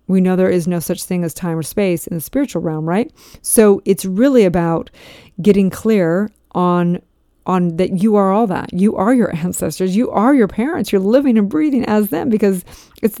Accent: American